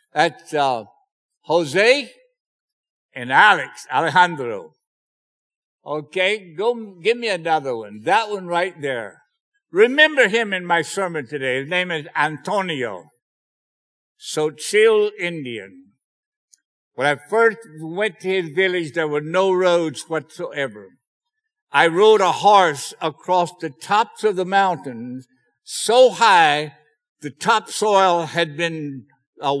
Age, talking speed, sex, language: 60-79, 120 wpm, male, English